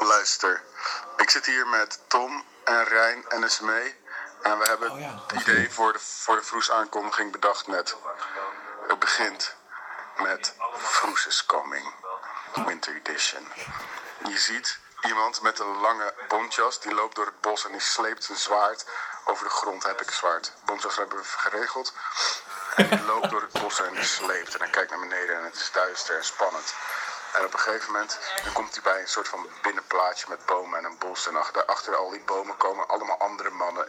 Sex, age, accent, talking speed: male, 50-69, Dutch, 190 wpm